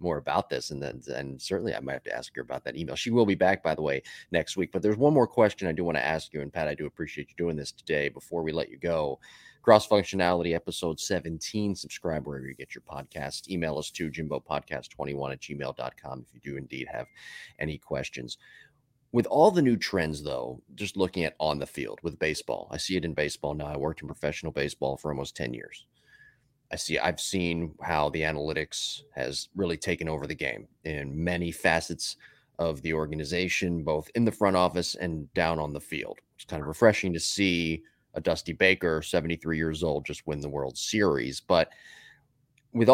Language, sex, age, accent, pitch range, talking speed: English, male, 30-49, American, 75-95 Hz, 210 wpm